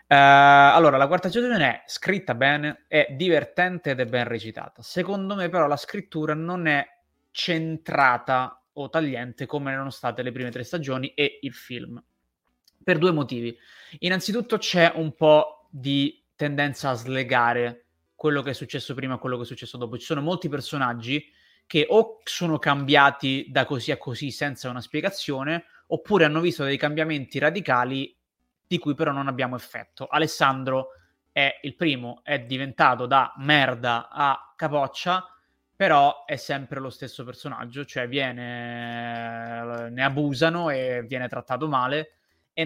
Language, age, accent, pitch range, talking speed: Italian, 20-39, native, 125-155 Hz, 150 wpm